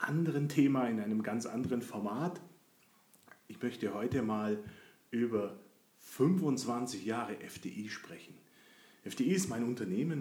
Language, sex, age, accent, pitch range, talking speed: German, male, 30-49, German, 120-150 Hz, 120 wpm